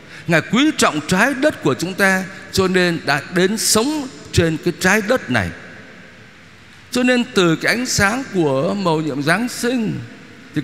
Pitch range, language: 135-195 Hz, Vietnamese